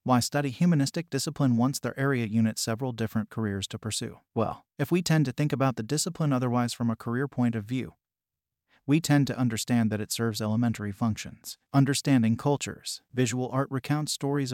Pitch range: 115-140 Hz